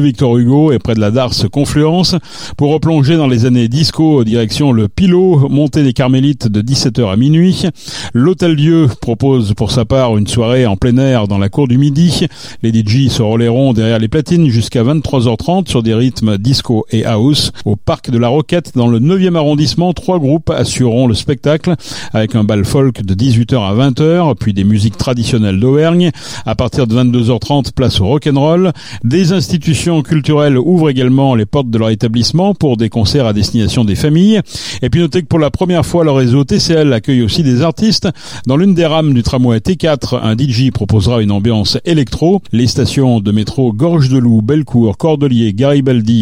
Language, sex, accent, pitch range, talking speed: French, male, French, 115-155 Hz, 185 wpm